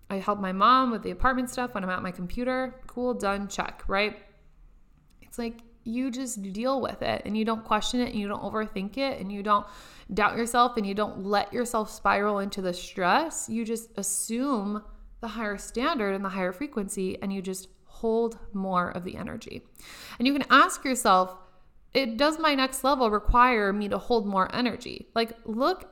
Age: 20-39